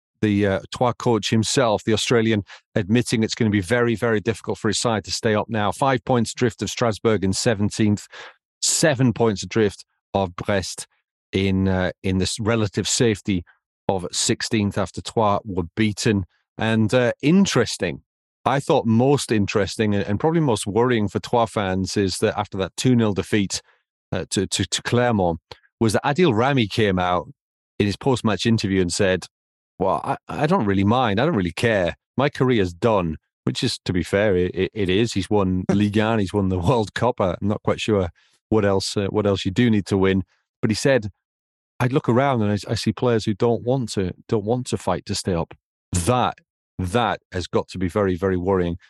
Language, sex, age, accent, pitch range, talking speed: English, male, 40-59, British, 95-120 Hz, 195 wpm